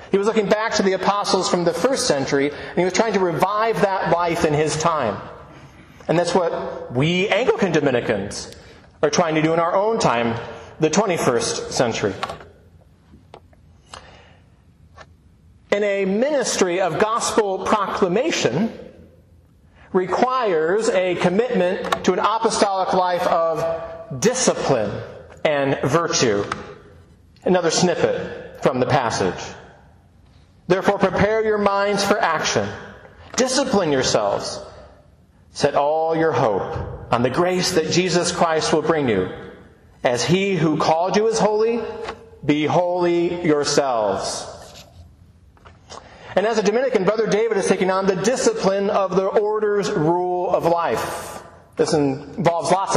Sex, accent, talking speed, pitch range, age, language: male, American, 125 wpm, 150-205 Hz, 40-59, English